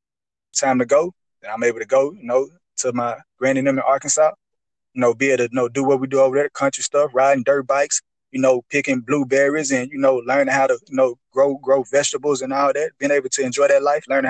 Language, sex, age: English, male, 20-39